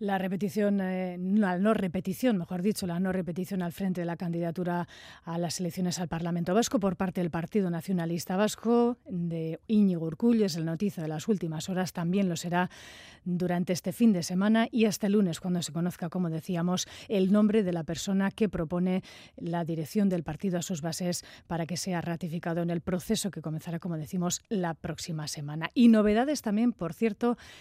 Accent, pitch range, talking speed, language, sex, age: Spanish, 170-210 Hz, 190 wpm, Spanish, female, 30-49